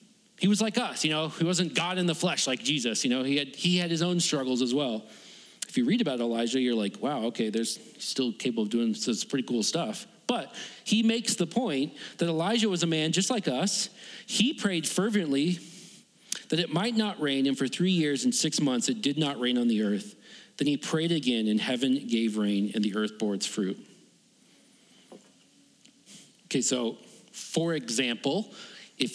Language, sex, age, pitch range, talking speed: English, male, 40-59, 130-210 Hz, 200 wpm